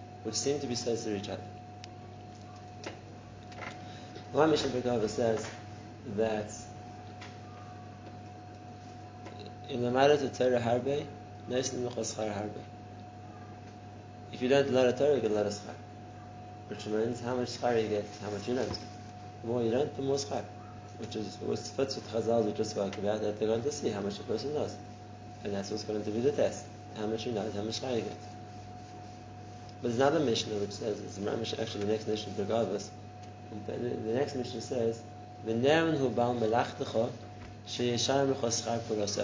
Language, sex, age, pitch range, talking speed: English, male, 30-49, 105-120 Hz, 160 wpm